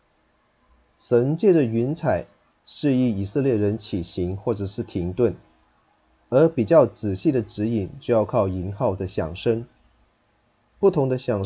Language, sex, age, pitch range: Chinese, male, 30-49, 100-125 Hz